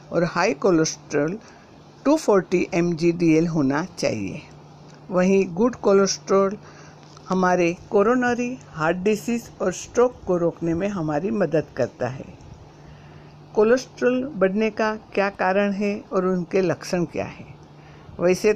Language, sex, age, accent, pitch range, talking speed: Hindi, female, 60-79, native, 165-205 Hz, 115 wpm